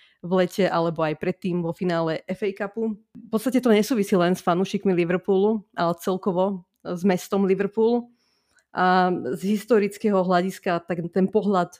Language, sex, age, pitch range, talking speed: Slovak, female, 30-49, 180-205 Hz, 145 wpm